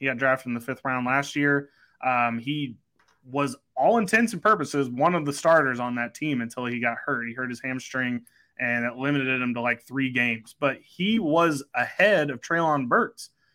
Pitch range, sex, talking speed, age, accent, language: 125-155 Hz, male, 205 wpm, 20-39, American, English